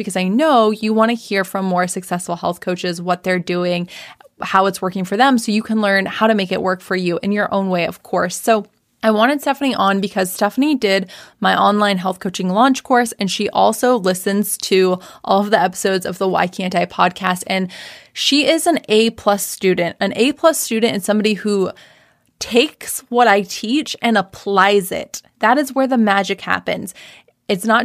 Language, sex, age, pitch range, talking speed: English, female, 20-39, 195-235 Hz, 200 wpm